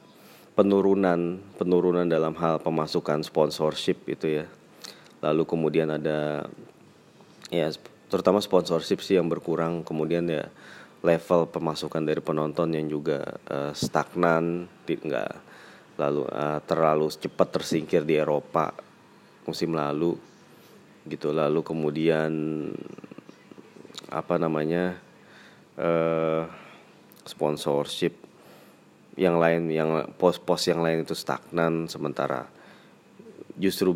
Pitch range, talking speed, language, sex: 80-90 Hz, 95 wpm, Indonesian, male